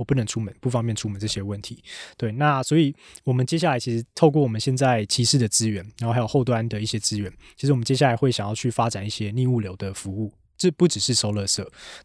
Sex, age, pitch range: male, 20-39, 105-130 Hz